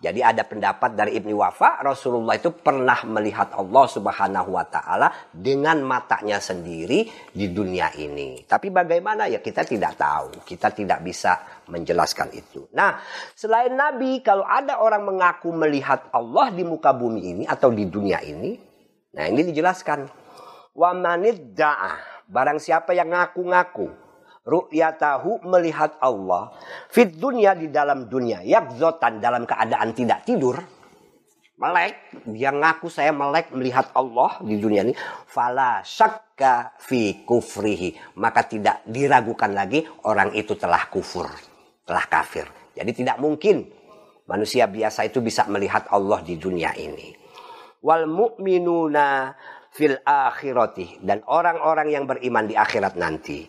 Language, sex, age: Indonesian, male, 50-69